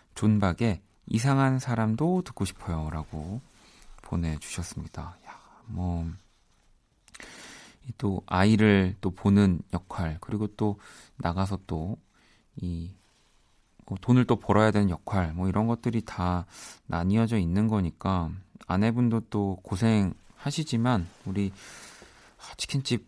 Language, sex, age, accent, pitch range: Korean, male, 40-59, native, 90-120 Hz